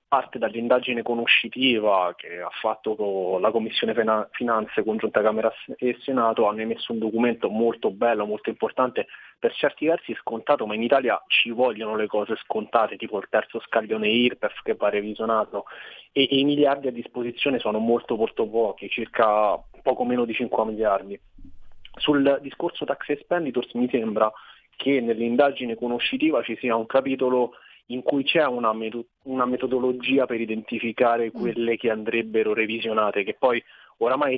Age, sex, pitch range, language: 20-39, male, 110-125 Hz, Italian